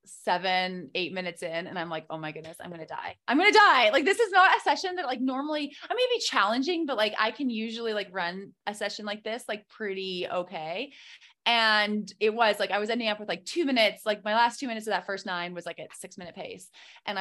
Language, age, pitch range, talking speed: English, 20-39, 185-300 Hz, 255 wpm